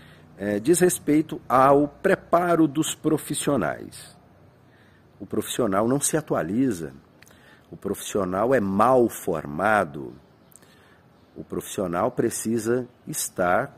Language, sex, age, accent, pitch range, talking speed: Portuguese, male, 50-69, Brazilian, 100-145 Hz, 90 wpm